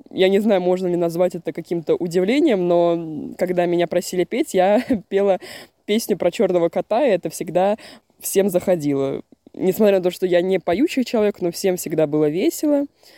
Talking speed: 175 wpm